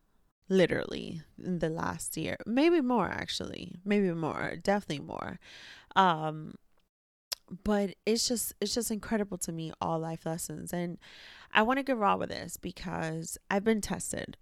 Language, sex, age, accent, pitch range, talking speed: English, female, 30-49, American, 170-205 Hz, 150 wpm